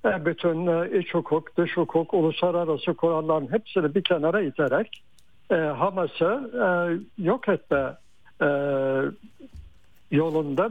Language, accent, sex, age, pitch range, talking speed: Turkish, native, male, 60-79, 145-190 Hz, 100 wpm